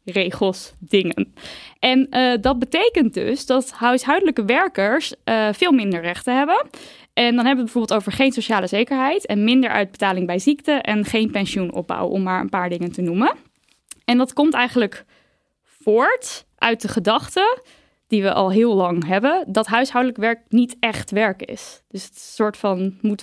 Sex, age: female, 10-29